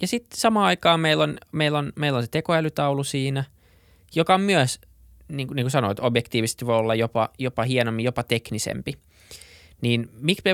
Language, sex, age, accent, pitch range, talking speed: Finnish, male, 20-39, native, 110-140 Hz, 175 wpm